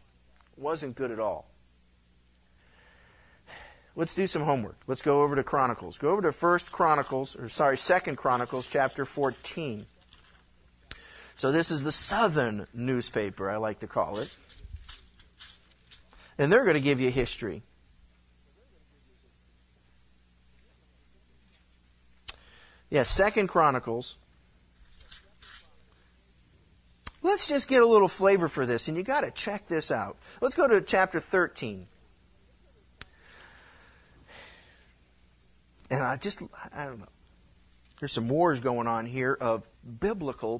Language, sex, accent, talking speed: English, male, American, 115 wpm